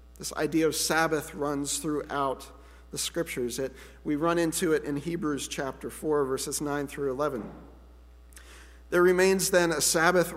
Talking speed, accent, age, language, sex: 145 wpm, American, 50-69, English, male